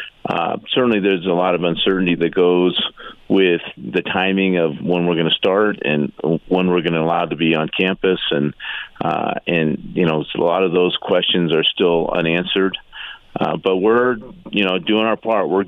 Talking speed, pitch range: 190 wpm, 85-95 Hz